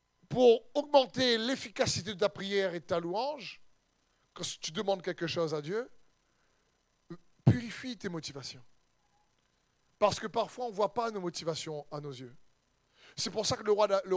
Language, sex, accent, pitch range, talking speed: French, male, French, 160-235 Hz, 160 wpm